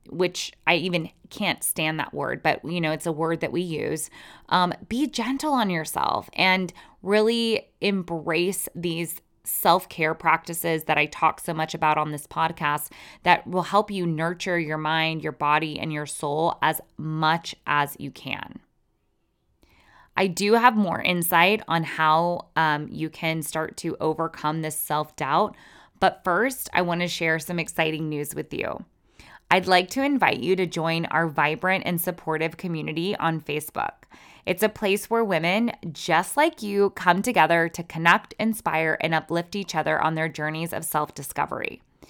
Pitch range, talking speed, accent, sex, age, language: 160-195 Hz, 165 wpm, American, female, 20-39, English